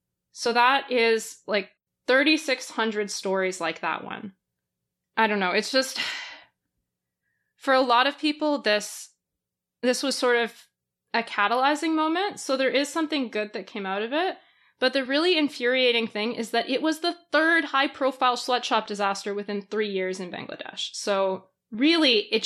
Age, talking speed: 20-39, 160 wpm